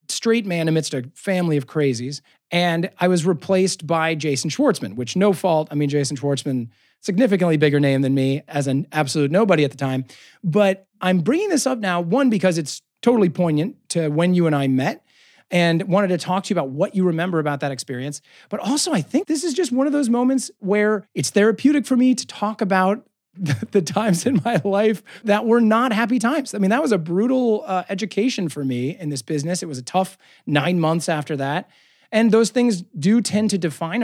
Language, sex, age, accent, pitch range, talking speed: English, male, 30-49, American, 145-210 Hz, 210 wpm